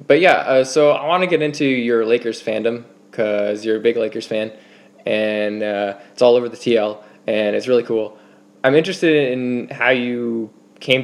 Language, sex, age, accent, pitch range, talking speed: English, male, 20-39, American, 110-135 Hz, 190 wpm